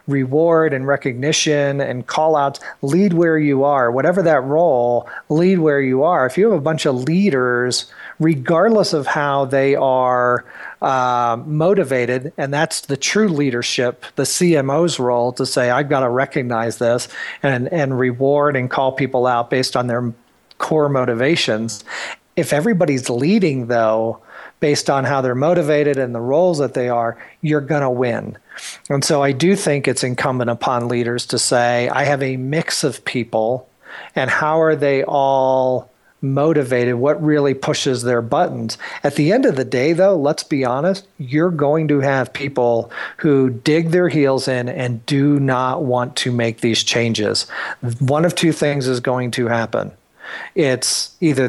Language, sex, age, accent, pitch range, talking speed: English, male, 40-59, American, 125-150 Hz, 165 wpm